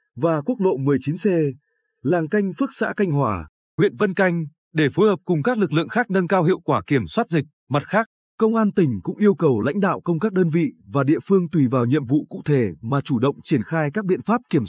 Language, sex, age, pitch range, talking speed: Vietnamese, male, 20-39, 145-200 Hz, 245 wpm